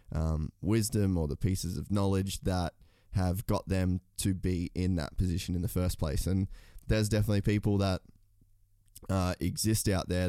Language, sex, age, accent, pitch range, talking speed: English, male, 20-39, Australian, 90-100 Hz, 170 wpm